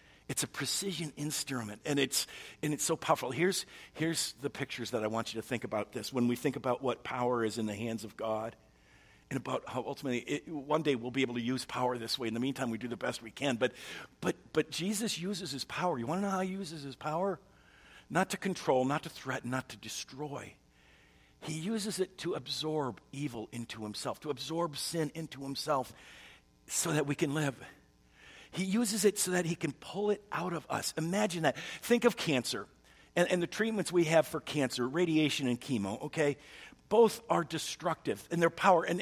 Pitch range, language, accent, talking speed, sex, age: 130-185 Hz, English, American, 210 wpm, male, 50-69